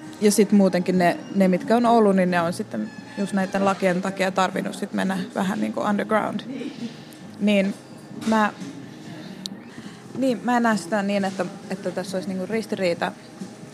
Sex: female